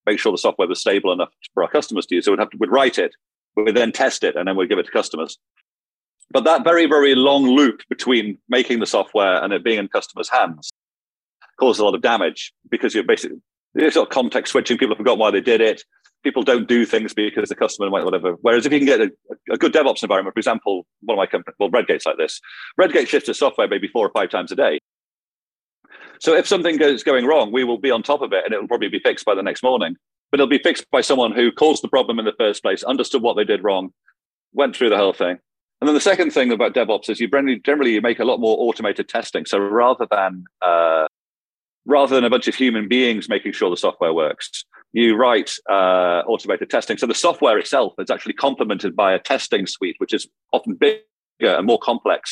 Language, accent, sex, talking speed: English, British, male, 240 wpm